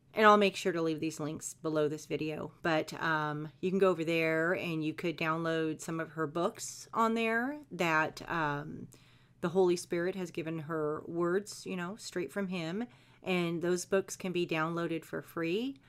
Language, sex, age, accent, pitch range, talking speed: English, female, 40-59, American, 160-225 Hz, 190 wpm